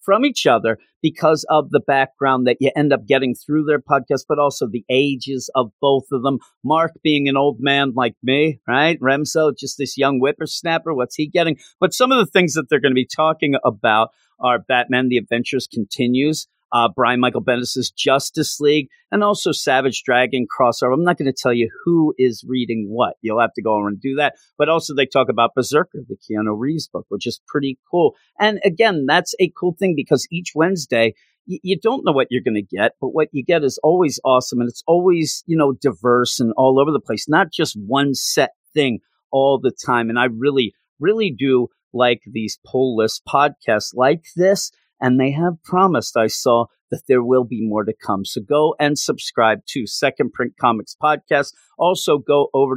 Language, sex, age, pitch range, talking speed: English, male, 40-59, 125-155 Hz, 205 wpm